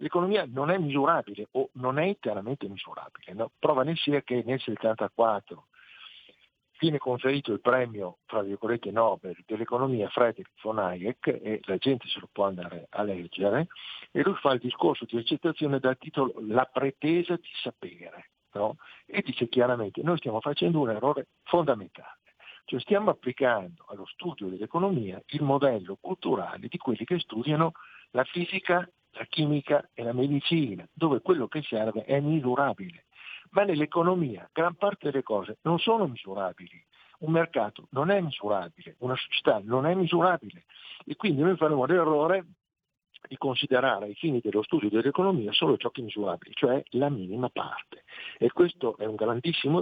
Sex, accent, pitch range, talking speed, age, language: male, native, 115-165 Hz, 160 wpm, 50-69, Italian